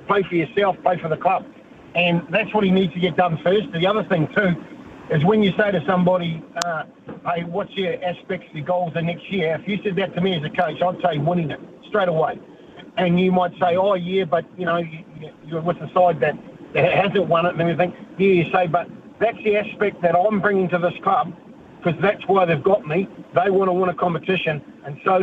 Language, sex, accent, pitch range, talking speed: English, male, Australian, 170-200 Hz, 235 wpm